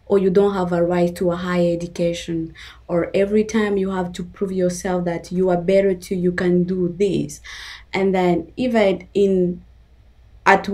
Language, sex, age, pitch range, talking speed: English, female, 20-39, 180-210 Hz, 180 wpm